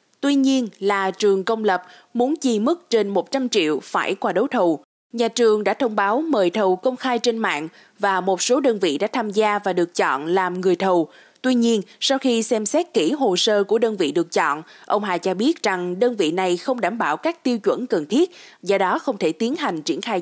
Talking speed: 235 wpm